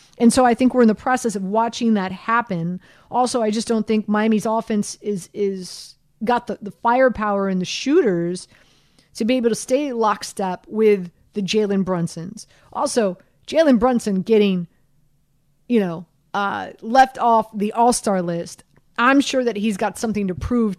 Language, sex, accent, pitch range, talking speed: English, female, American, 180-230 Hz, 165 wpm